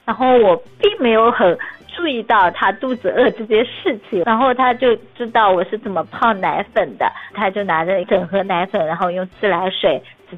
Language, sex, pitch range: Chinese, female, 185-255 Hz